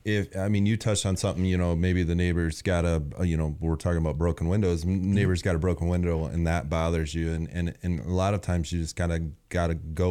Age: 30-49